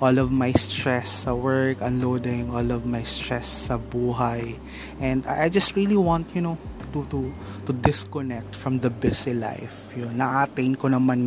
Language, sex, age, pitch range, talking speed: English, male, 20-39, 115-140 Hz, 170 wpm